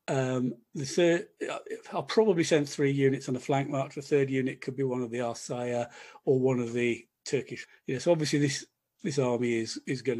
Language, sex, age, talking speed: English, male, 40-59, 210 wpm